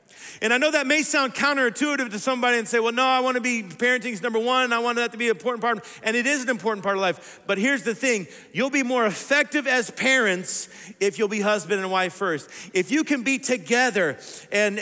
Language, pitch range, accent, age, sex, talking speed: English, 200-255 Hz, American, 40-59, male, 240 wpm